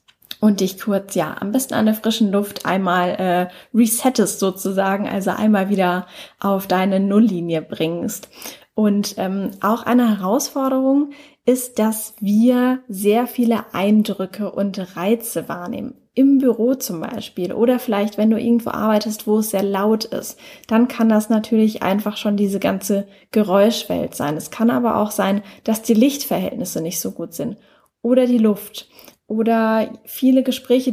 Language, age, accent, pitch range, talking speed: German, 10-29, German, 195-245 Hz, 150 wpm